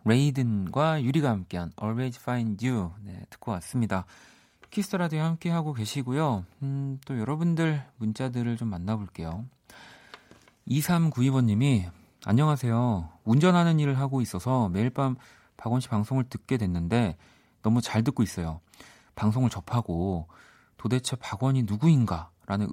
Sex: male